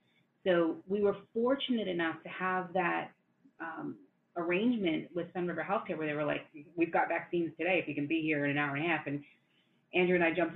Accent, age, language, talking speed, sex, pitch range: American, 30-49, English, 215 wpm, female, 170-195 Hz